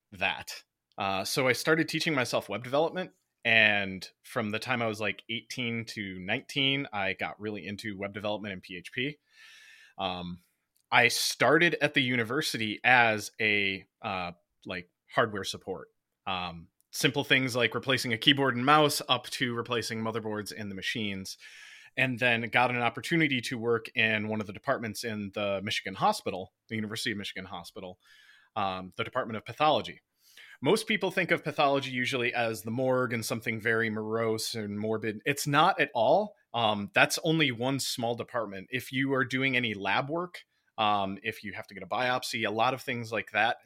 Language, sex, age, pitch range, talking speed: English, male, 30-49, 105-135 Hz, 175 wpm